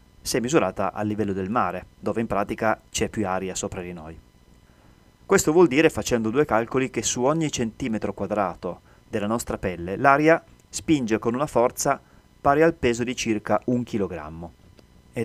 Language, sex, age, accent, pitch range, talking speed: Italian, male, 30-49, native, 100-125 Hz, 165 wpm